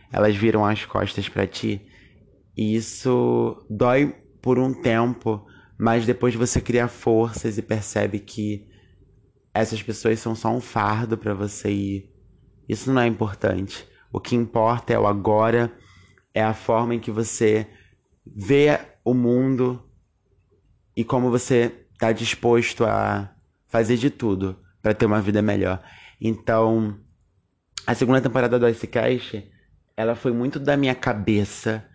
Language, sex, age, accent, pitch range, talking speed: Portuguese, male, 20-39, Brazilian, 100-120 Hz, 140 wpm